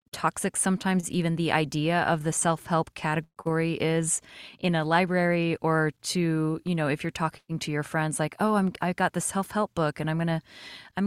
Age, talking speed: 20-39, 195 wpm